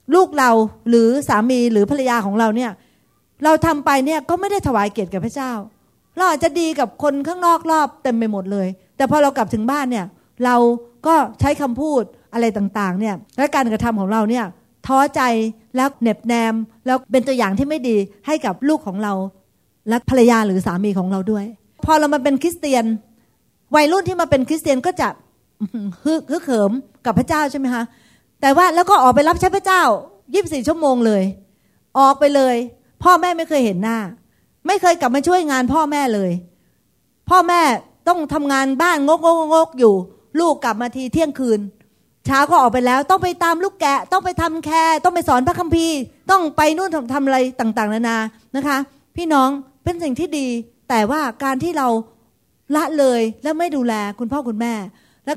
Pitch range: 225-310 Hz